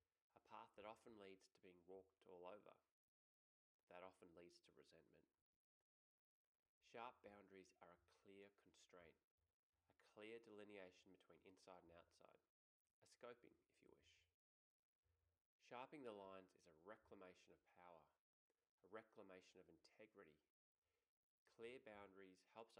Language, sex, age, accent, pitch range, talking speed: English, male, 20-39, Australian, 90-105 Hz, 125 wpm